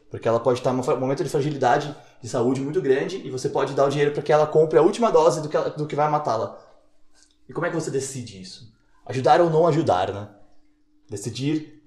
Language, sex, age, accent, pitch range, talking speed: Portuguese, male, 20-39, Brazilian, 120-165 Hz, 235 wpm